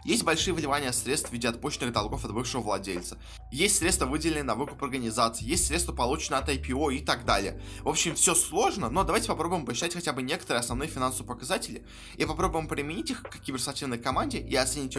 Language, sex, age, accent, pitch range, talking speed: Russian, male, 20-39, native, 115-160 Hz, 190 wpm